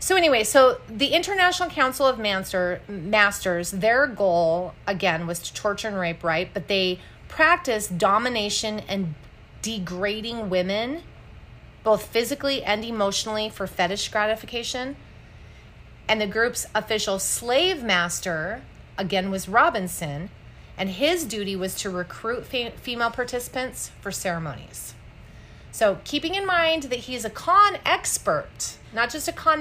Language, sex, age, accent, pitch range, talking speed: English, female, 30-49, American, 180-250 Hz, 130 wpm